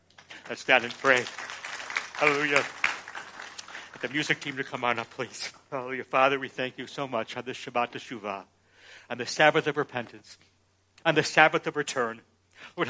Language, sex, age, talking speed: English, male, 60-79, 165 wpm